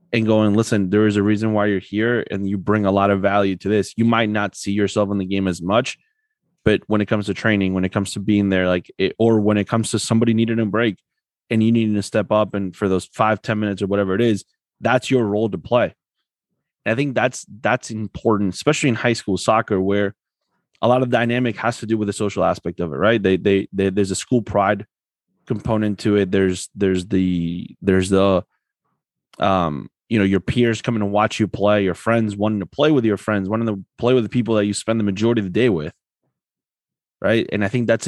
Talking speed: 240 wpm